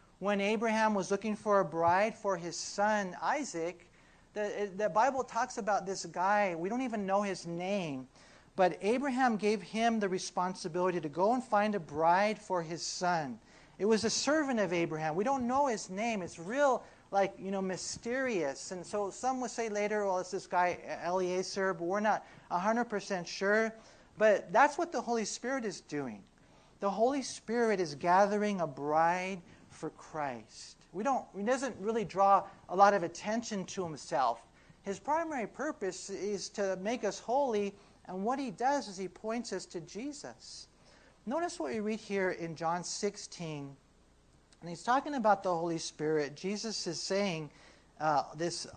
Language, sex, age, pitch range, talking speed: English, male, 40-59, 175-220 Hz, 170 wpm